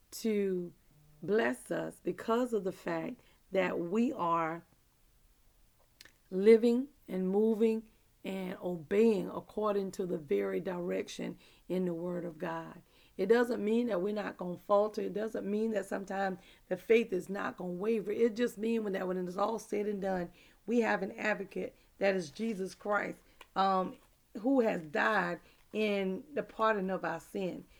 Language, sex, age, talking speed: English, female, 40-59, 160 wpm